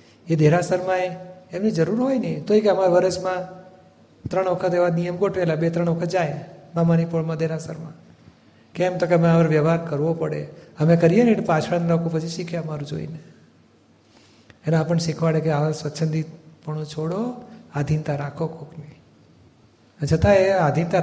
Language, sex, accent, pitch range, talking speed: Gujarati, male, native, 155-185 Hz, 105 wpm